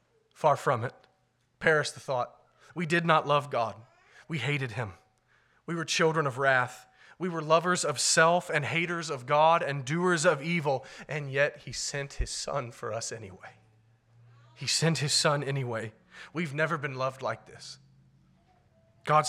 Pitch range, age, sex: 125-155 Hz, 30-49, male